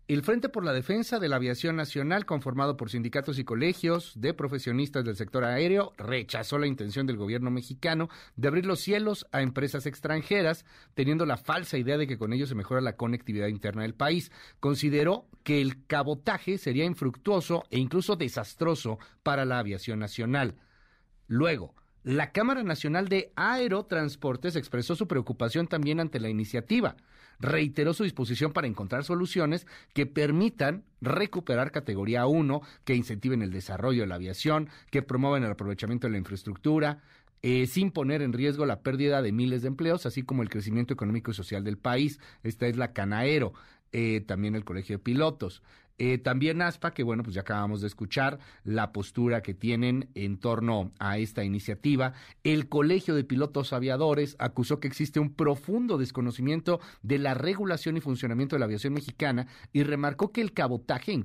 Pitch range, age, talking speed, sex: 120-155 Hz, 40-59, 170 wpm, male